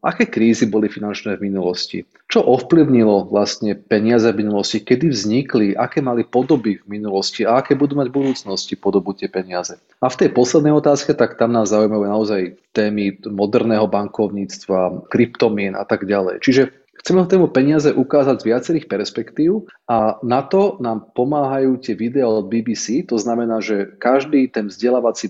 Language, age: Slovak, 30-49